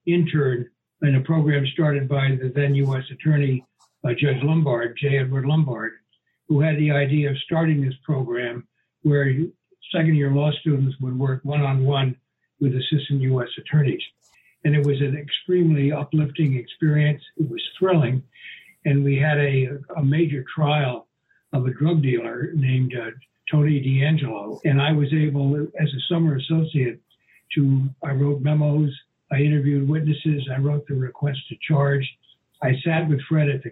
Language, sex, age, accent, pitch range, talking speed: English, male, 60-79, American, 130-155 Hz, 155 wpm